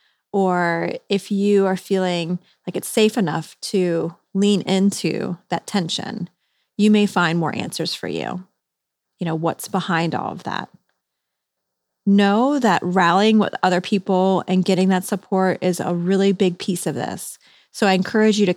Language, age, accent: English, 30-49, American